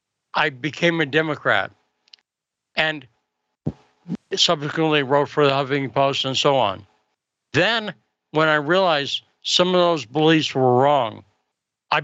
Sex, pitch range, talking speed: male, 125-165 Hz, 125 wpm